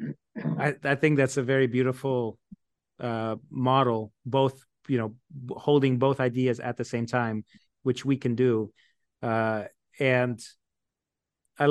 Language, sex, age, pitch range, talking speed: English, male, 30-49, 115-135 Hz, 140 wpm